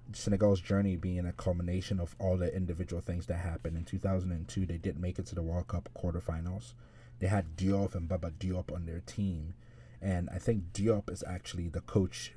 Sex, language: male, English